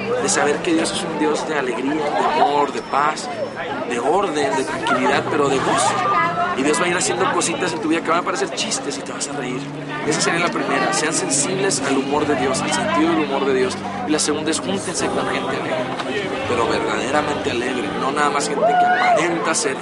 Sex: male